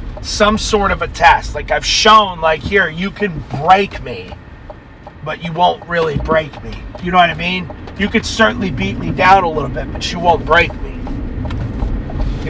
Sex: male